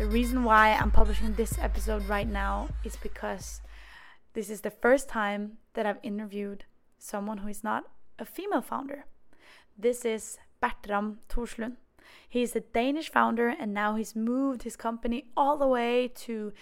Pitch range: 210-250 Hz